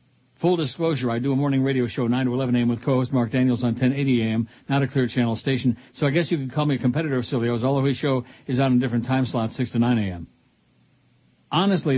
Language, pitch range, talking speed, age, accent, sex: English, 125-145 Hz, 245 wpm, 60-79, American, male